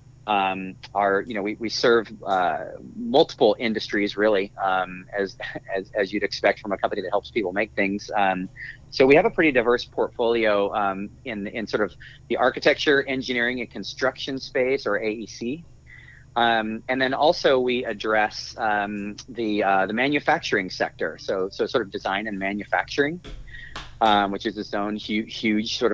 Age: 30-49